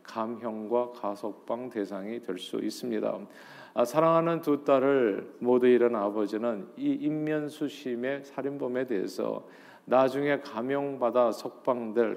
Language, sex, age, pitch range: Korean, male, 40-59, 110-140 Hz